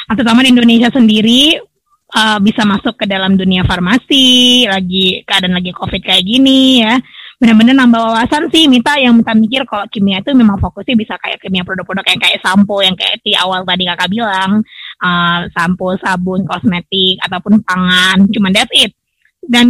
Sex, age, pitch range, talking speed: female, 20-39, 190-245 Hz, 170 wpm